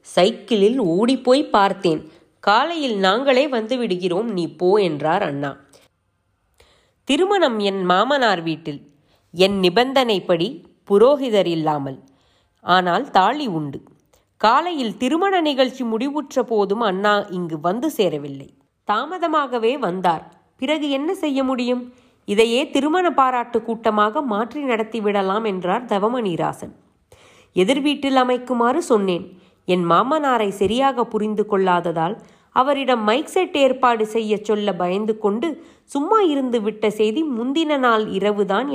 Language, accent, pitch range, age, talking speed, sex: Tamil, native, 190-265 Hz, 30-49, 105 wpm, female